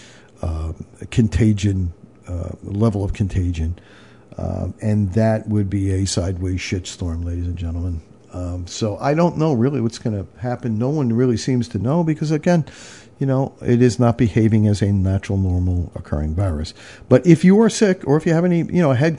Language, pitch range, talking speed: English, 100-130 Hz, 190 wpm